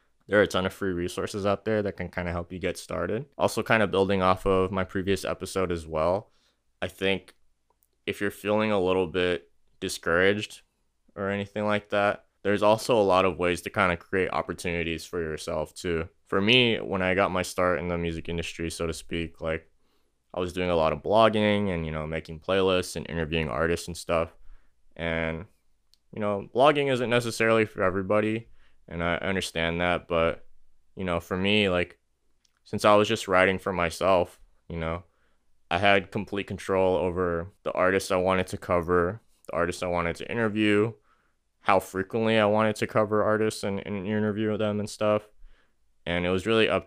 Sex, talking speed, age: male, 190 wpm, 20-39